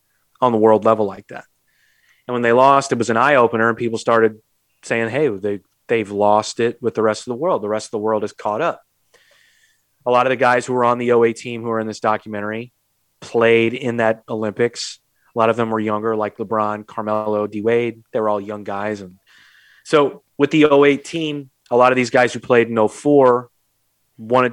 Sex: male